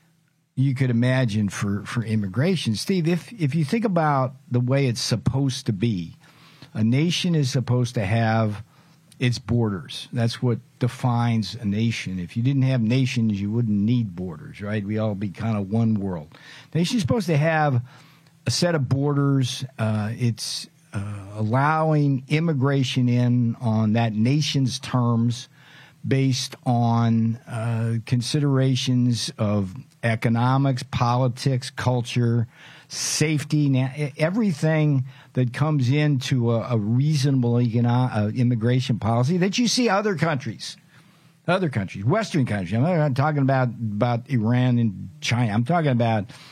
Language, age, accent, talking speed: English, 50-69, American, 140 wpm